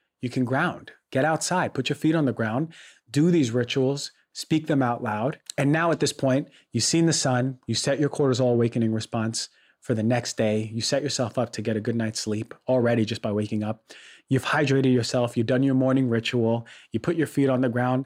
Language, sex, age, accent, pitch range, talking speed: English, male, 30-49, American, 115-140 Hz, 225 wpm